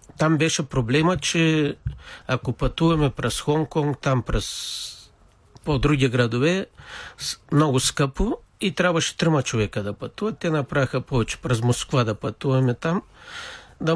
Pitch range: 120-160 Hz